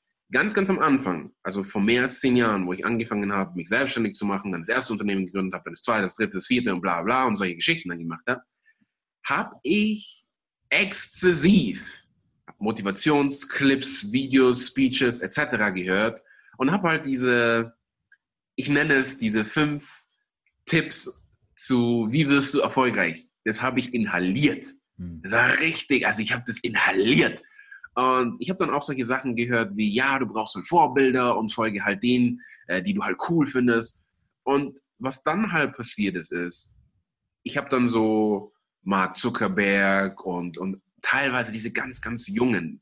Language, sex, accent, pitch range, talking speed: English, male, German, 105-140 Hz, 165 wpm